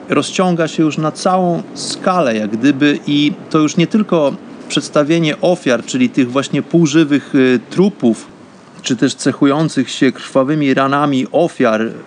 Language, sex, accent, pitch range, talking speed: Polish, male, native, 135-170 Hz, 135 wpm